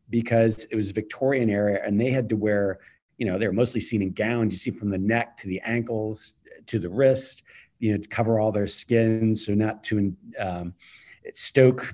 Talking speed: 205 wpm